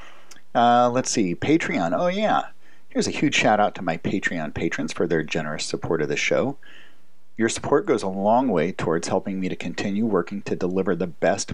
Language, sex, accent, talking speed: English, male, American, 190 wpm